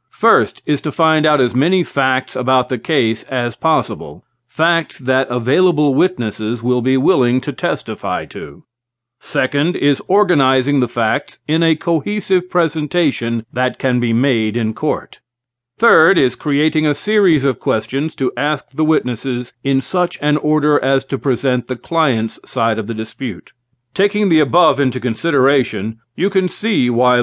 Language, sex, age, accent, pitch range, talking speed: English, male, 50-69, American, 120-150 Hz, 155 wpm